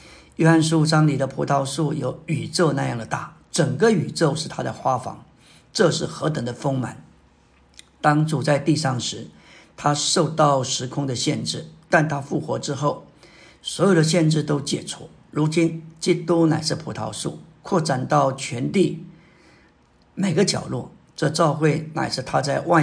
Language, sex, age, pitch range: Chinese, male, 50-69, 135-165 Hz